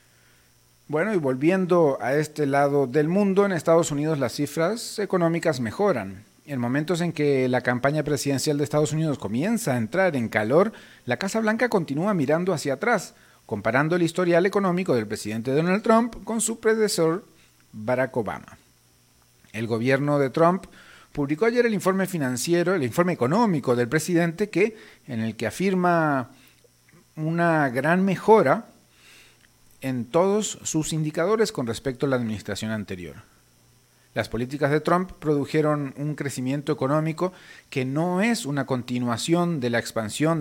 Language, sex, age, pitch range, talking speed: Spanish, male, 40-59, 120-175 Hz, 145 wpm